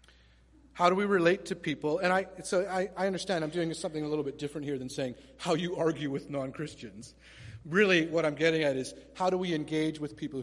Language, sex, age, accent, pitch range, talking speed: English, male, 40-59, American, 135-165 Hz, 225 wpm